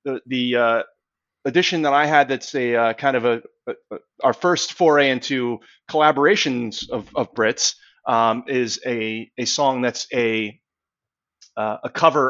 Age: 30-49